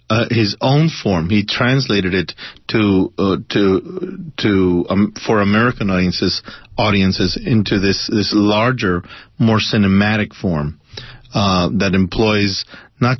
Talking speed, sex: 125 wpm, male